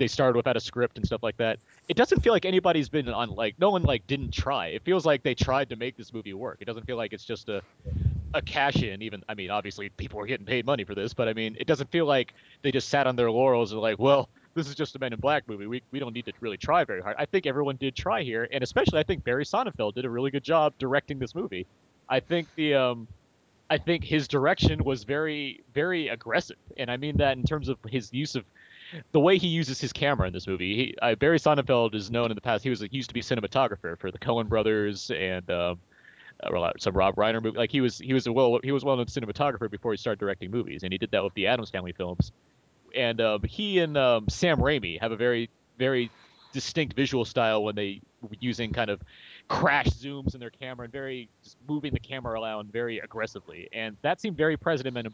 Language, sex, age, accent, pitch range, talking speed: English, male, 30-49, American, 110-140 Hz, 250 wpm